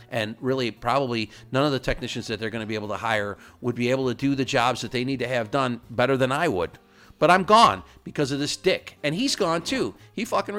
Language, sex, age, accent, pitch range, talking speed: English, male, 50-69, American, 110-145 Hz, 250 wpm